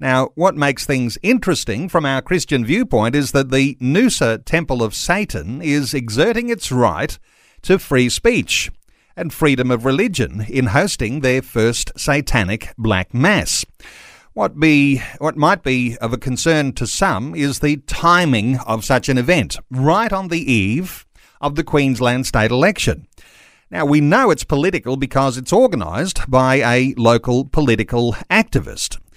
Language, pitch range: English, 120-160 Hz